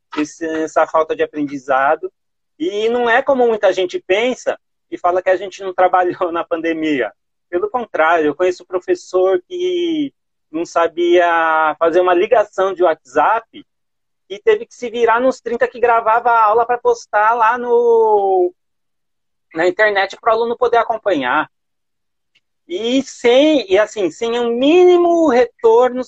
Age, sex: 30-49, male